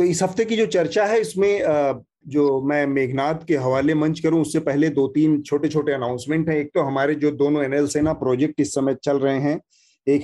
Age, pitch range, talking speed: 40-59, 130-155 Hz, 215 wpm